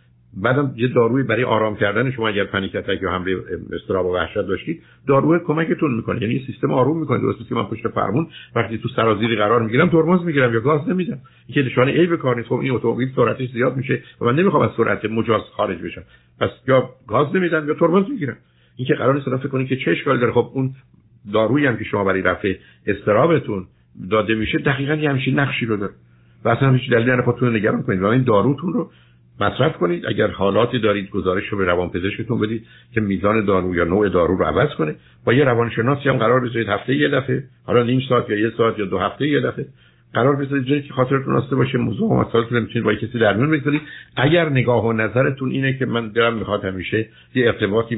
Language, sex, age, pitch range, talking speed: Persian, male, 60-79, 100-130 Hz, 210 wpm